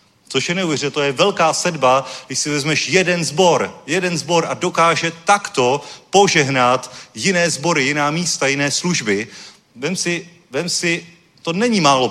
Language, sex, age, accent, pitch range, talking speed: Czech, male, 40-59, native, 145-180 Hz, 155 wpm